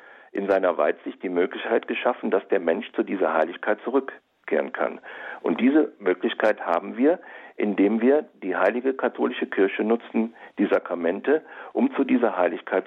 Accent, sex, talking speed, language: German, male, 150 wpm, German